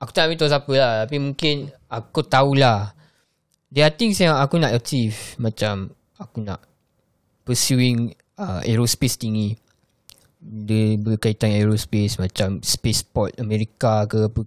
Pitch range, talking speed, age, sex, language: 115-160 Hz, 135 wpm, 20-39, male, Malay